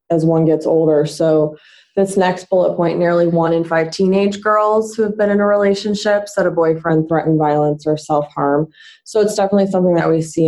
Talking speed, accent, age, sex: 200 wpm, American, 20-39, female